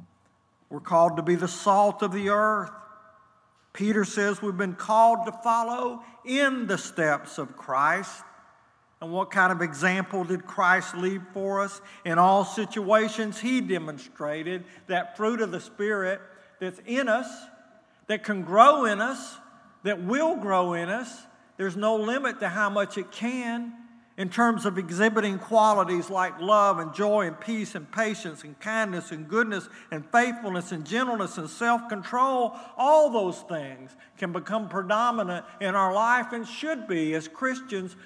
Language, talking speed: English, 155 wpm